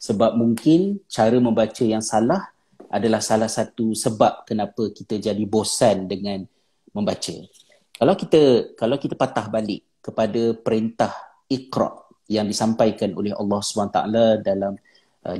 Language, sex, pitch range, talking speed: Malay, male, 110-130 Hz, 125 wpm